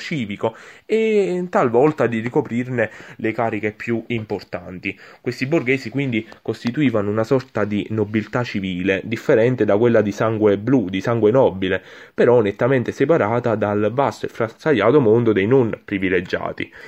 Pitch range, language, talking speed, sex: 100-120 Hz, Italian, 135 wpm, male